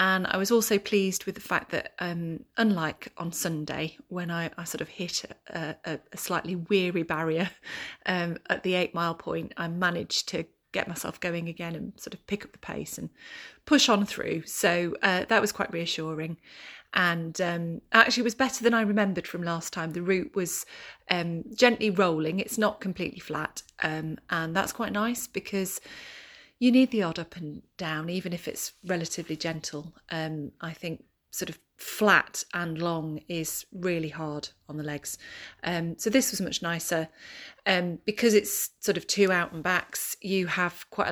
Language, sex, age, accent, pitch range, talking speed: English, female, 30-49, British, 165-195 Hz, 180 wpm